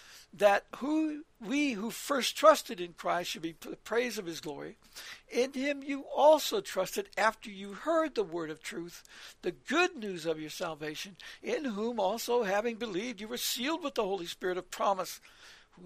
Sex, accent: male, American